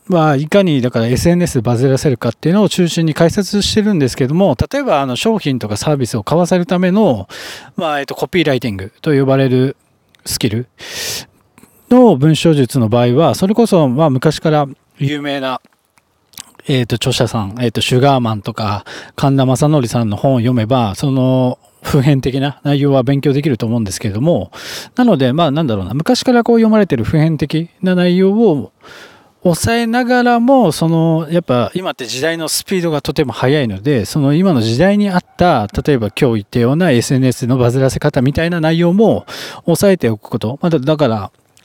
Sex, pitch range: male, 125-175 Hz